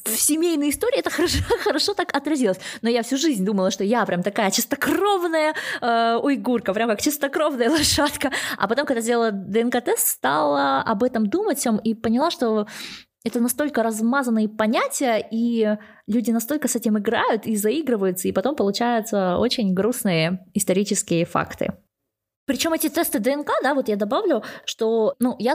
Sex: female